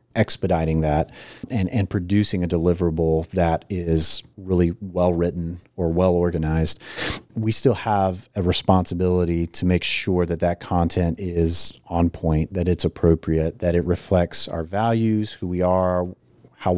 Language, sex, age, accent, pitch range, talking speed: English, male, 30-49, American, 85-100 Hz, 140 wpm